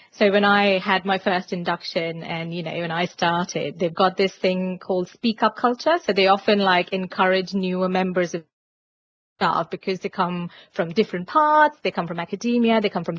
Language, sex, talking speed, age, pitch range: English, female, 195 wpm, 30-49, 185-215 Hz